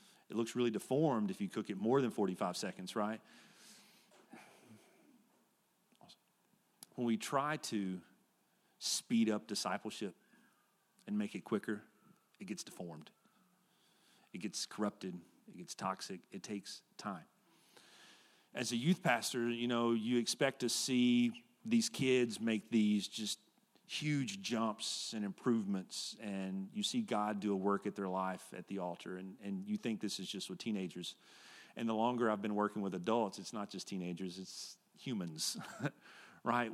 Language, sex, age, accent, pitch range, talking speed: English, male, 40-59, American, 100-120 Hz, 150 wpm